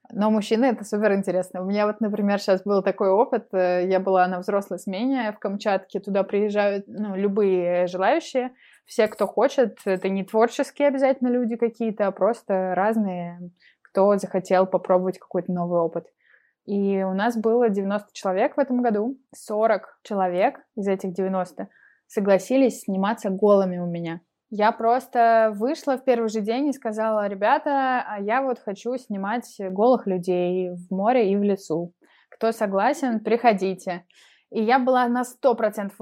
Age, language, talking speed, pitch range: 20-39, Russian, 150 wpm, 190-235 Hz